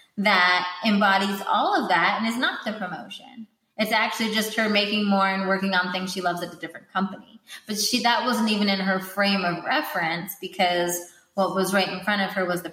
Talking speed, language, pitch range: 215 wpm, English, 185-225 Hz